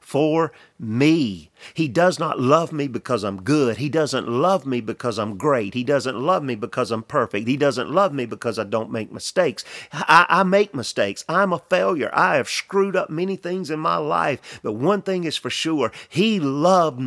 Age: 40-59